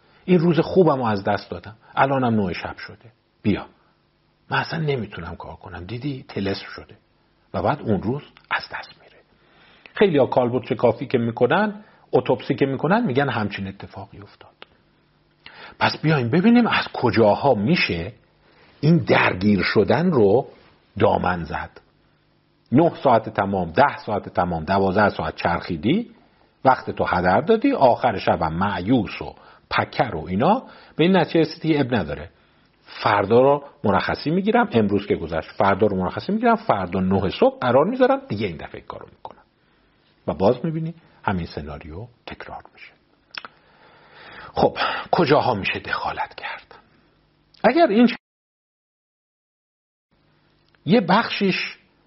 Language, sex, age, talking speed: Persian, male, 50-69, 130 wpm